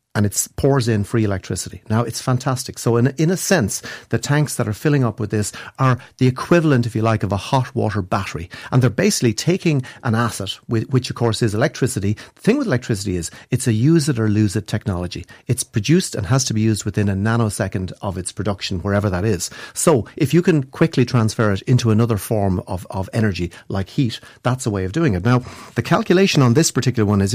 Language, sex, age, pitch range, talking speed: English, male, 40-59, 105-130 Hz, 215 wpm